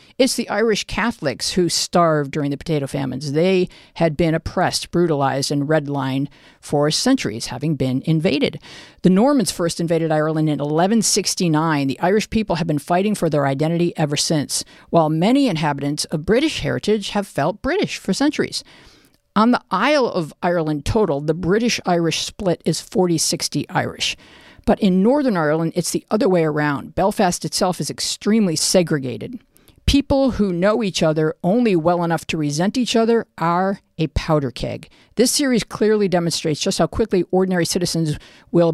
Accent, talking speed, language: American, 160 wpm, English